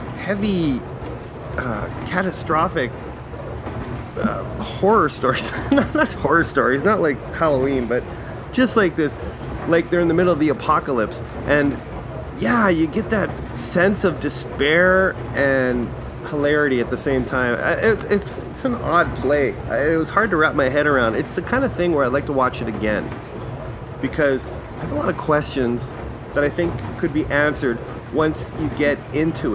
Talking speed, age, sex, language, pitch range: 165 wpm, 30-49, male, English, 125-170 Hz